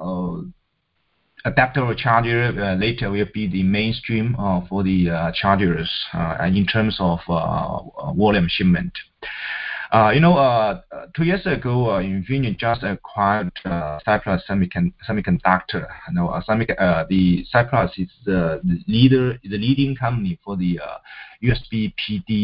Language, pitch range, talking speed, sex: English, 90-125 Hz, 140 wpm, male